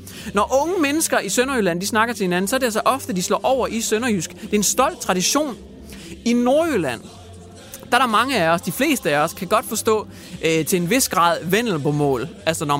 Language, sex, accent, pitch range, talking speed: Danish, male, native, 165-235 Hz, 225 wpm